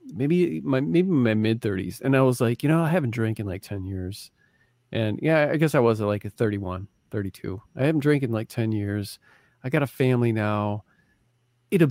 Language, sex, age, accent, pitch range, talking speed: English, male, 40-59, American, 110-135 Hz, 205 wpm